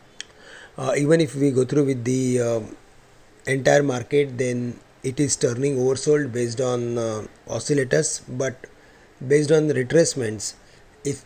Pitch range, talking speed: 125-145 Hz, 135 wpm